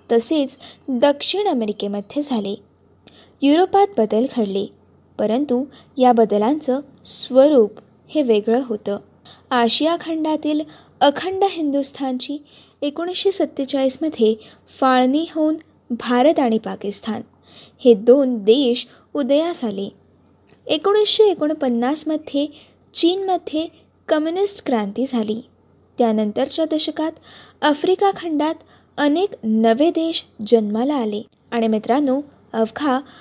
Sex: female